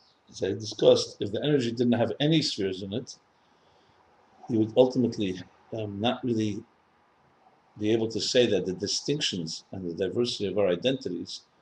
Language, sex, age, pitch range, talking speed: English, male, 50-69, 90-120 Hz, 160 wpm